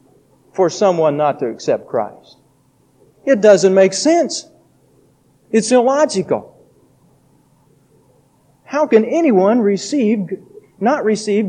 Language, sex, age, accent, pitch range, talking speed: English, male, 40-59, American, 130-175 Hz, 95 wpm